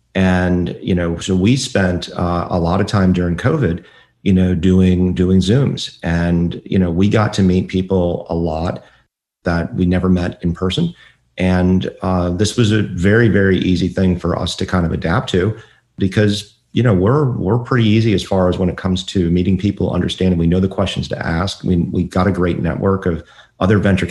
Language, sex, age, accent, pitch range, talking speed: English, male, 40-59, American, 90-105 Hz, 205 wpm